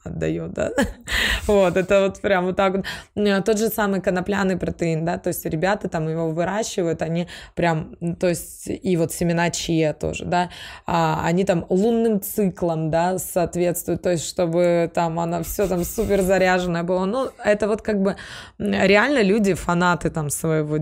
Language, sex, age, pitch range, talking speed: Russian, female, 20-39, 165-200 Hz, 165 wpm